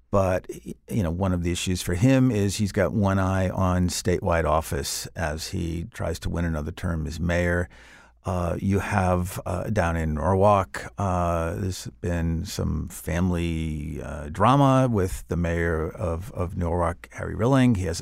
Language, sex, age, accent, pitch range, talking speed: English, male, 50-69, American, 85-110 Hz, 165 wpm